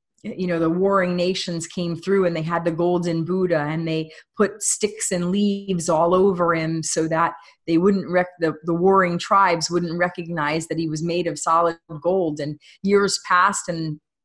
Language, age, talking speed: English, 30-49, 185 wpm